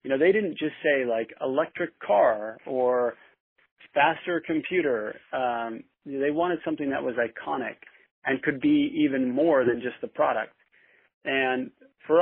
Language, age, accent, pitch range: English, 40-59, American, 120-140 Hz